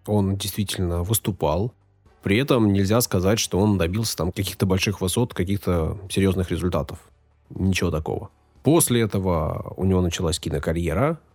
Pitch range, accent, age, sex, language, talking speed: 90-110 Hz, native, 20-39, male, Russian, 130 wpm